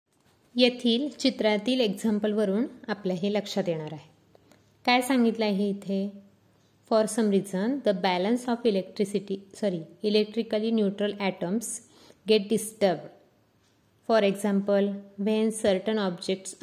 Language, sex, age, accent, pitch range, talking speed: Marathi, female, 20-39, native, 195-230 Hz, 110 wpm